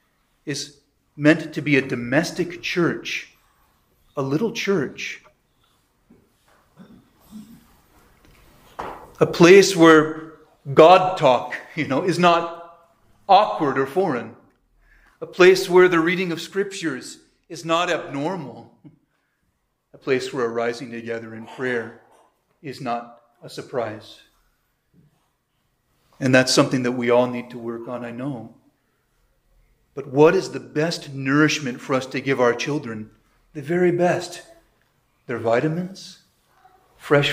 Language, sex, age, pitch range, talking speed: English, male, 40-59, 125-160 Hz, 120 wpm